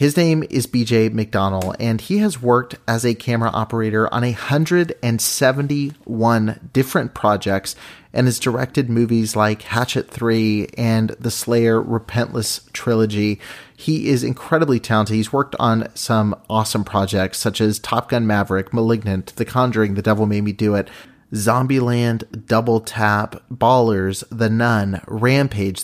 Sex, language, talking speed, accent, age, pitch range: male, English, 140 wpm, American, 30-49, 110-135 Hz